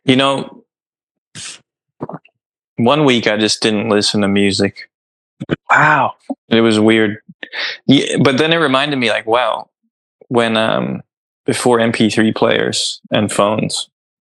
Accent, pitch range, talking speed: American, 100-120 Hz, 120 wpm